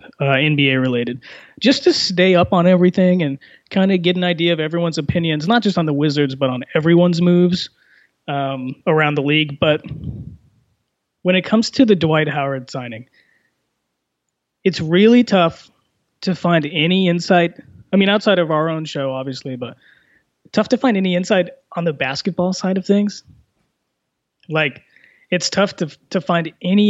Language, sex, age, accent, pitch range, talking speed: English, male, 20-39, American, 150-185 Hz, 165 wpm